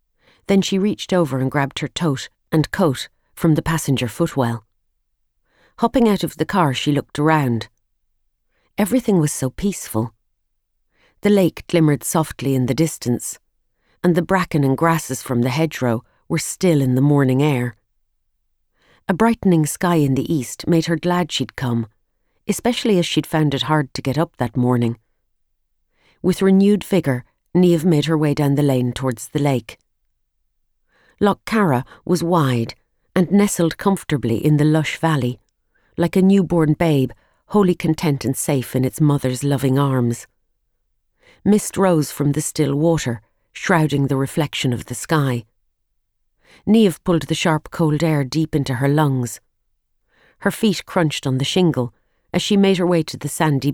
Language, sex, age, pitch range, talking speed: English, female, 40-59, 125-170 Hz, 160 wpm